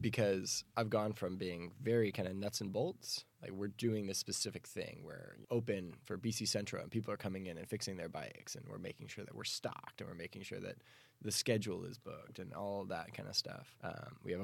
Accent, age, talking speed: American, 10-29, 235 wpm